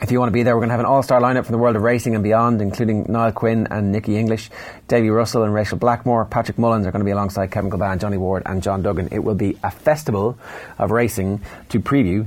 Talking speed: 270 wpm